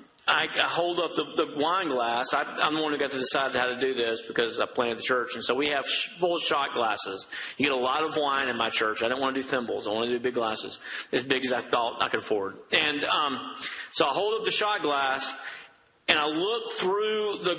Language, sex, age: English, male, 40-59